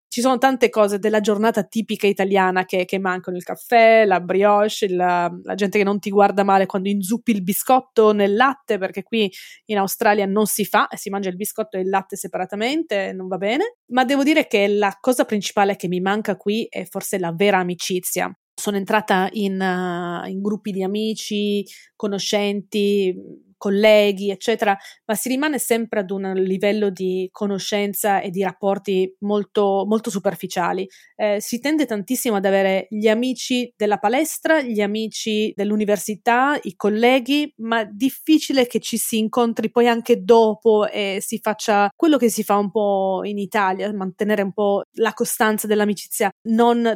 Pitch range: 195-225 Hz